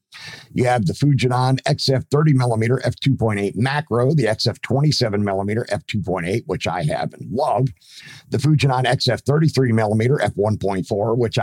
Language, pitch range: English, 115-145 Hz